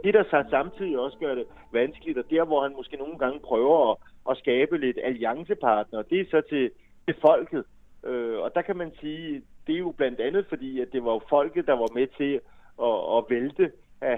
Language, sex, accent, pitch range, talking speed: Danish, male, native, 125-185 Hz, 210 wpm